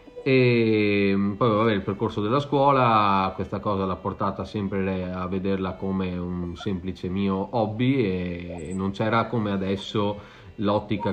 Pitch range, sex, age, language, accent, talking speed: 95-110 Hz, male, 30-49, Italian, native, 130 wpm